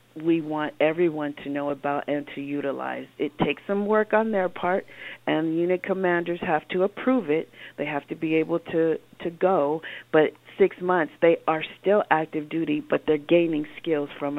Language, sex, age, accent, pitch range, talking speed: English, female, 40-59, American, 150-180 Hz, 185 wpm